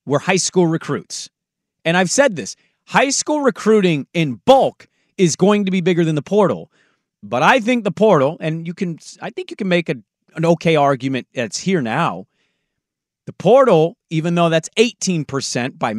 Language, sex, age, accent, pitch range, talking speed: English, male, 30-49, American, 150-200 Hz, 180 wpm